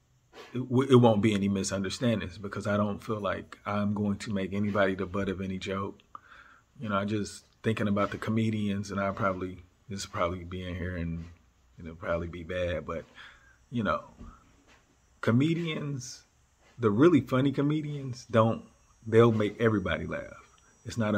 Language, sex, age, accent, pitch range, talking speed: English, male, 40-59, American, 95-115 Hz, 160 wpm